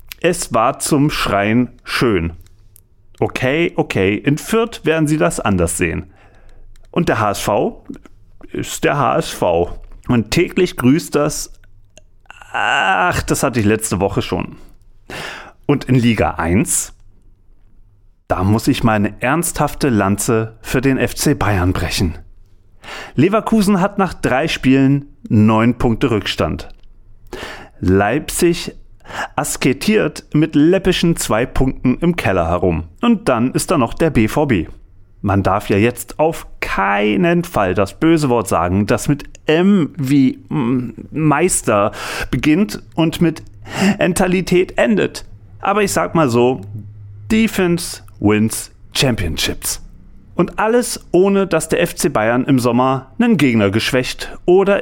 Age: 40-59